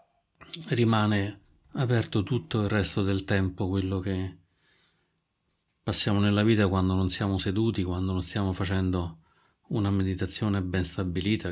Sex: male